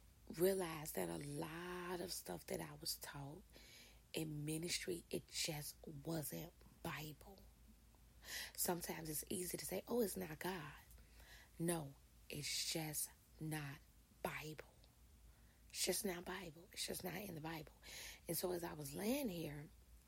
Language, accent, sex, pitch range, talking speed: English, American, female, 150-175 Hz, 140 wpm